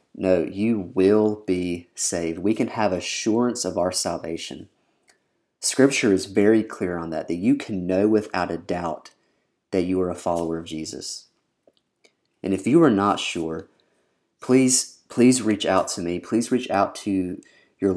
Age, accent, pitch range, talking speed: 30-49, American, 85-105 Hz, 165 wpm